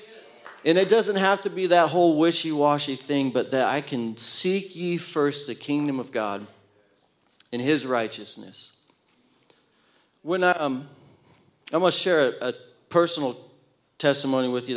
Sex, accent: male, American